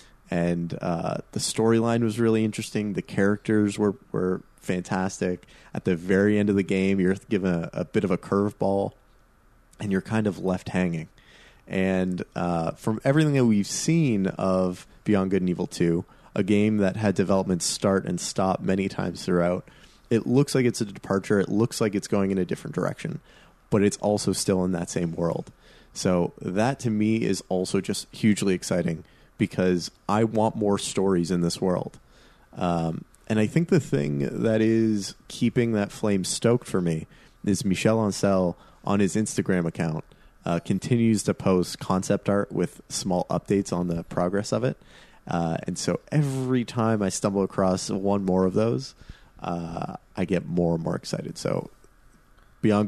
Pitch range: 90-110 Hz